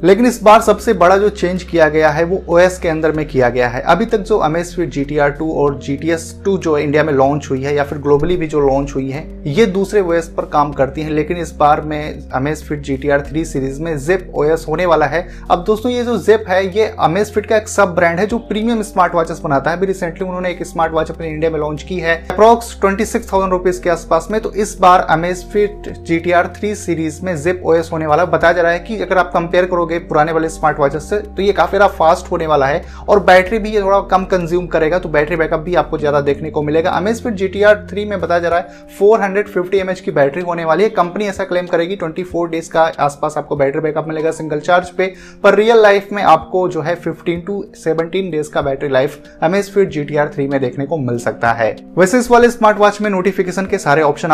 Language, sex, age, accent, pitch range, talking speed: Hindi, male, 30-49, native, 150-195 Hz, 170 wpm